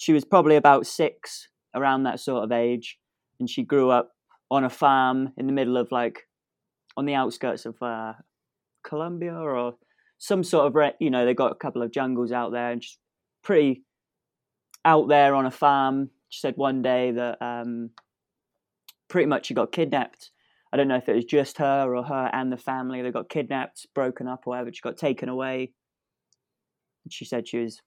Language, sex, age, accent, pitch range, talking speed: English, male, 20-39, British, 120-145 Hz, 195 wpm